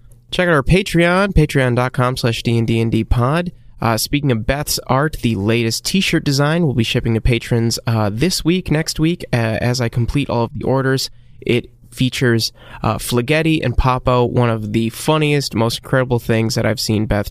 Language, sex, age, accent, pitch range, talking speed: English, male, 20-39, American, 110-140 Hz, 185 wpm